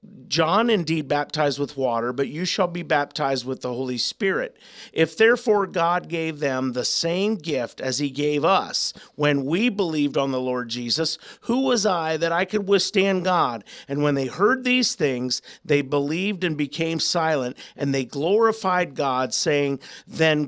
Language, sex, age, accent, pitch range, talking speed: English, male, 50-69, American, 140-185 Hz, 170 wpm